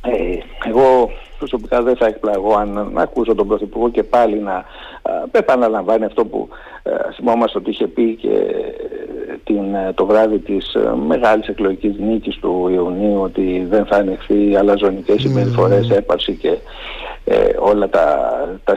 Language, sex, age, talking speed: Greek, male, 60-79, 140 wpm